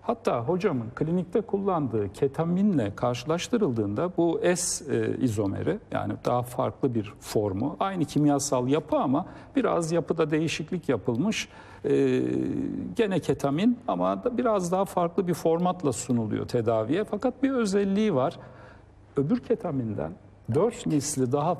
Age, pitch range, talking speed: 60-79, 120-170 Hz, 120 wpm